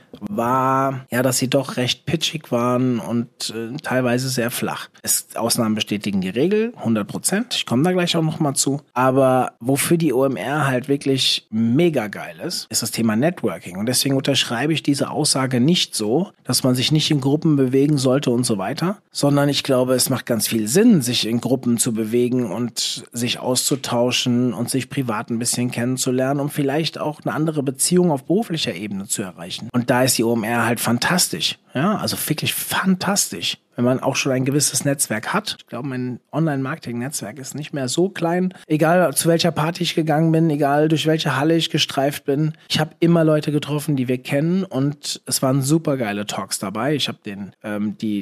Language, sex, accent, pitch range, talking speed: German, male, German, 120-150 Hz, 190 wpm